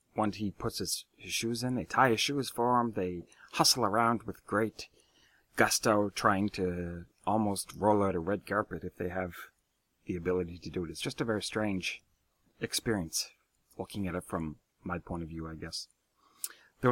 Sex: male